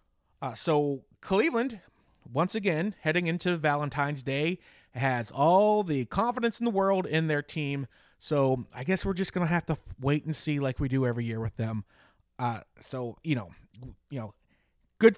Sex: male